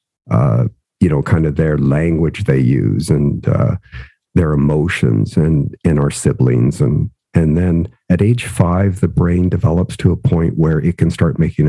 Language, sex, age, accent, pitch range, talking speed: English, male, 50-69, American, 85-105 Hz, 175 wpm